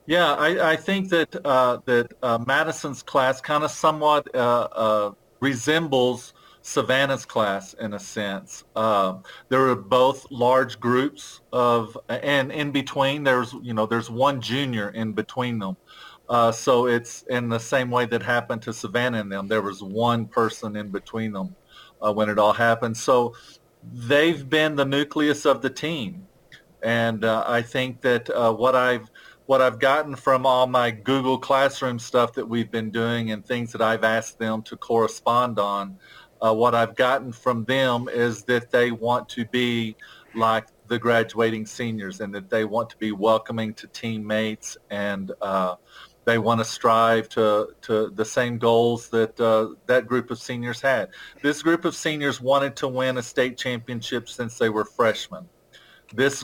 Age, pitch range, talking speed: 40-59, 110-130 Hz, 170 wpm